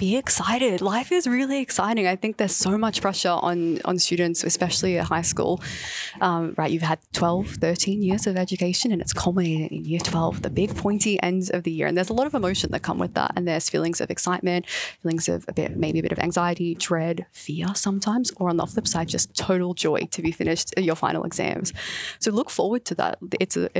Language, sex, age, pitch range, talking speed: English, female, 20-39, 175-210 Hz, 225 wpm